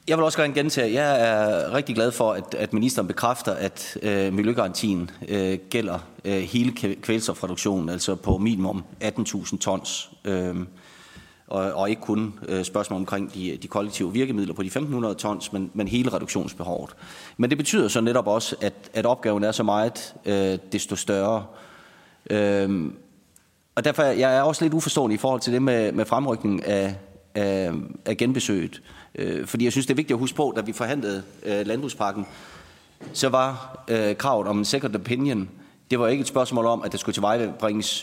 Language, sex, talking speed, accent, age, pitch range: Danish, male, 185 wpm, native, 30-49, 100-125 Hz